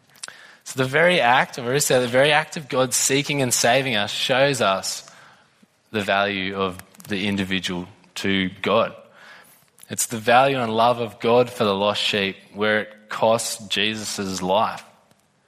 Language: English